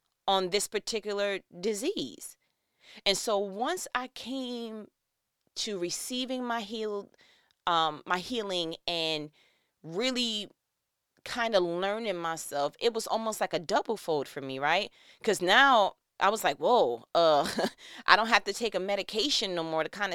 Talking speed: 150 wpm